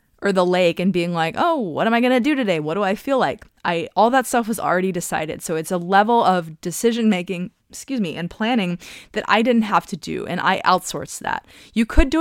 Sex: female